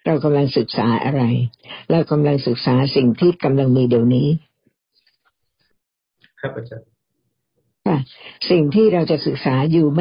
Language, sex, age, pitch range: Thai, female, 60-79, 135-170 Hz